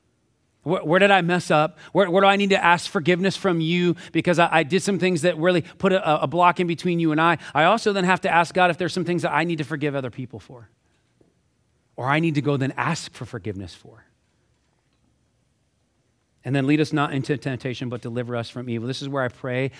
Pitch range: 130-170 Hz